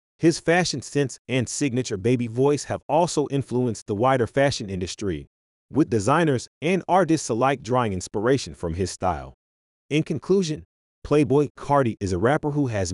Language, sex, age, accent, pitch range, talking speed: English, male, 30-49, American, 95-140 Hz, 155 wpm